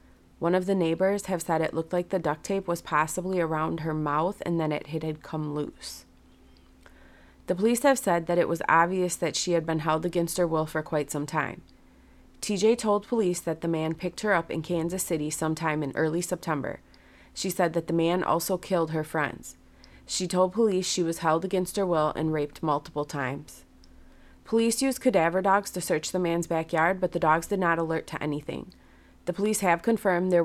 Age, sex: 30-49, female